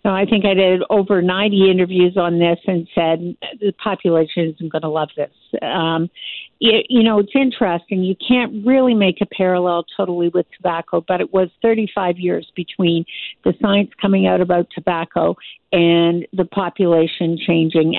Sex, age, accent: female, 50-69, American